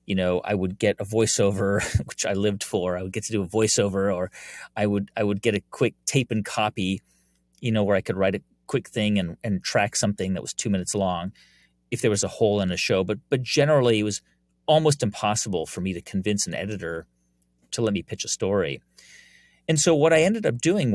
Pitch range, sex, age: 90-120 Hz, male, 30-49